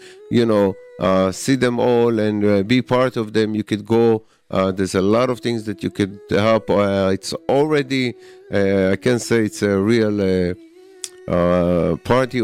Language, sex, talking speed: English, male, 185 wpm